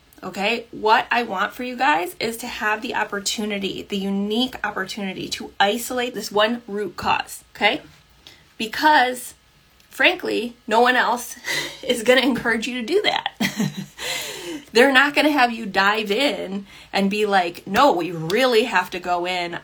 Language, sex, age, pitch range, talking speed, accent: English, female, 20-39, 190-245 Hz, 160 wpm, American